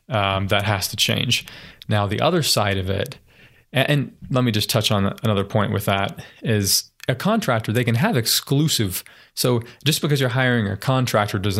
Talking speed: 190 wpm